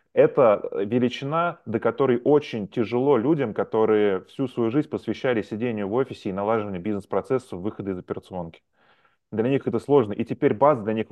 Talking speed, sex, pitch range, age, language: 165 wpm, male, 100-130 Hz, 20-39, Russian